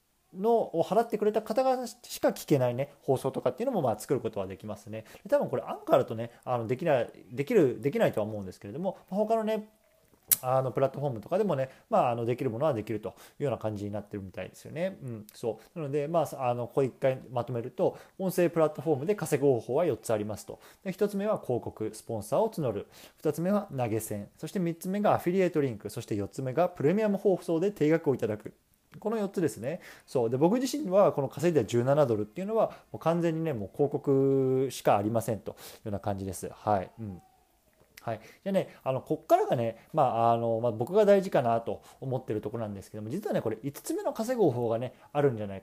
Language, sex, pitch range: Japanese, male, 115-185 Hz